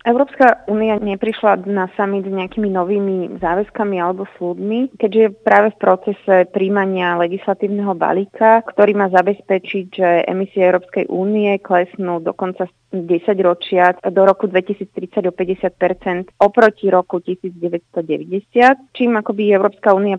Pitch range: 180-205 Hz